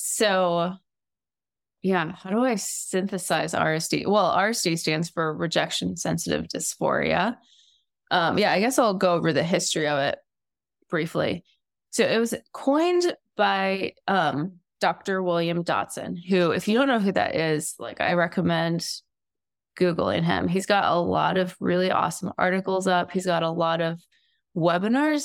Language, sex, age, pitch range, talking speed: English, female, 20-39, 165-205 Hz, 150 wpm